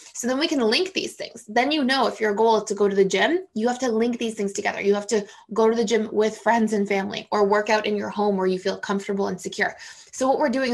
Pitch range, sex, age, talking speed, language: 205-240 Hz, female, 20-39, 295 wpm, English